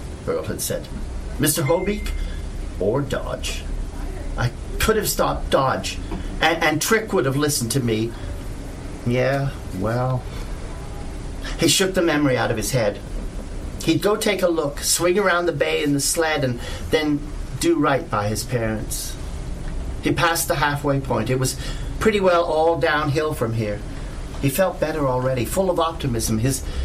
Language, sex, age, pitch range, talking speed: English, male, 50-69, 105-160 Hz, 155 wpm